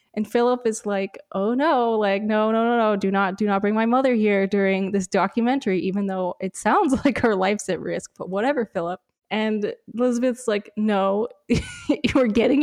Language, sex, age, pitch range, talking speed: English, female, 10-29, 195-250 Hz, 190 wpm